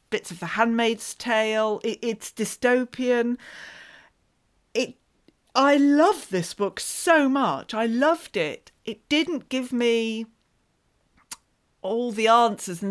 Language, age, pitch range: English, 40-59, 205-270 Hz